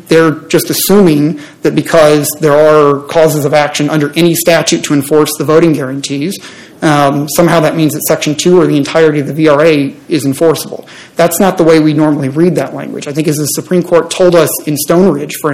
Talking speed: 210 wpm